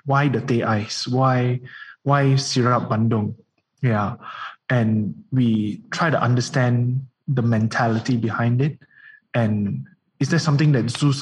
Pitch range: 120-150 Hz